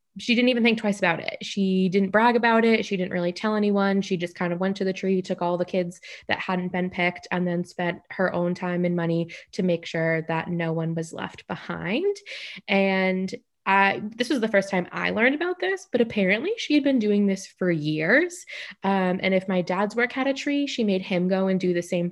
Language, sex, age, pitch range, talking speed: English, female, 20-39, 175-225 Hz, 235 wpm